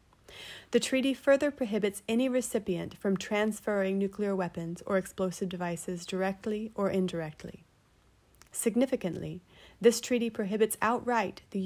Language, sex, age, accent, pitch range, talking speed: English, female, 30-49, American, 185-225 Hz, 115 wpm